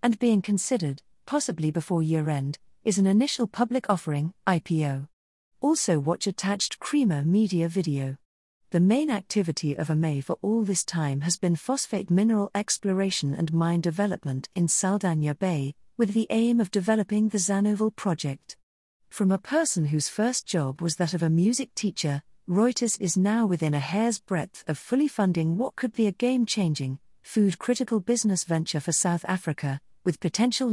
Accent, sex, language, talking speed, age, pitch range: British, female, English, 160 wpm, 40-59, 160-220 Hz